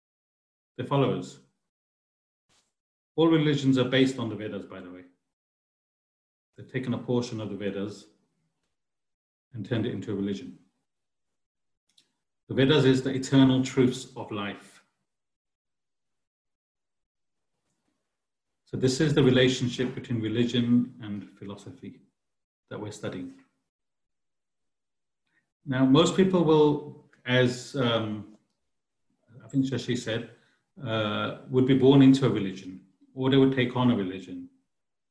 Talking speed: 115 wpm